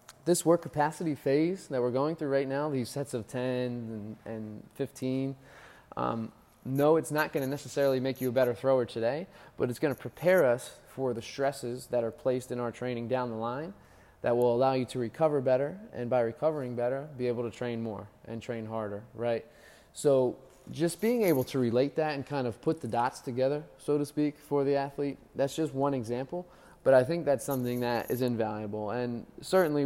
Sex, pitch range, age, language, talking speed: male, 120-145 Hz, 20-39, English, 205 wpm